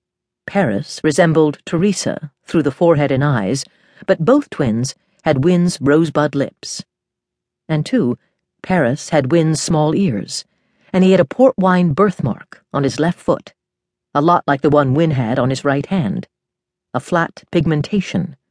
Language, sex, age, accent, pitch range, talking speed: English, female, 50-69, American, 140-180 Hz, 150 wpm